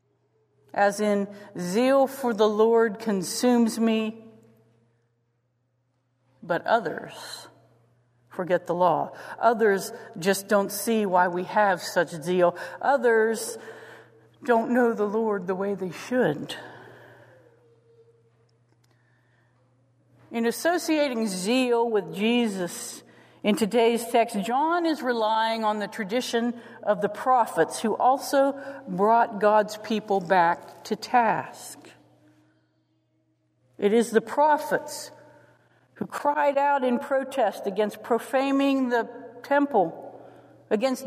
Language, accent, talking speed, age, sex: English, American, 100 wpm, 50-69, female